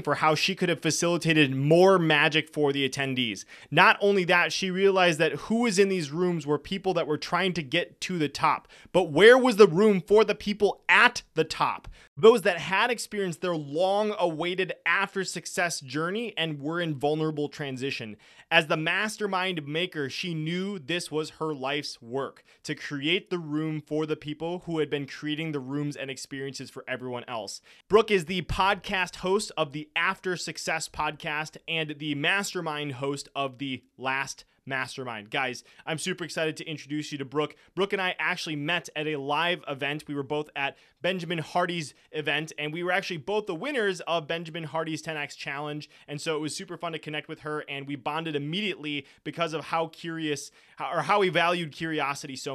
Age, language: 20-39, English